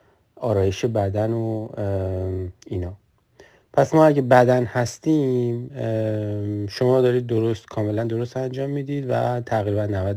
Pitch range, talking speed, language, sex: 105-125 Hz, 110 wpm, Persian, male